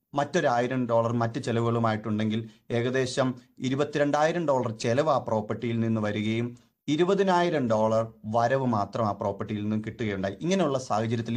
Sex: male